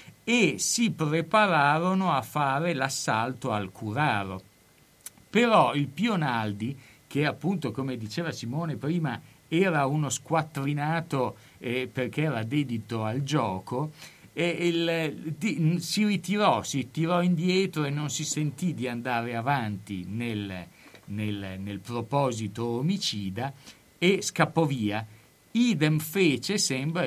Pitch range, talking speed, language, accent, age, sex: 105-155 Hz, 110 wpm, Italian, native, 50-69, male